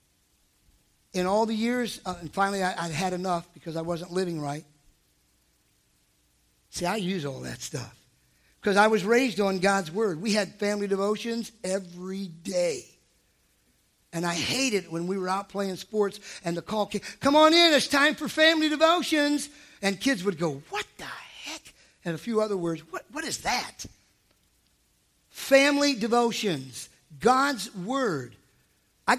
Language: English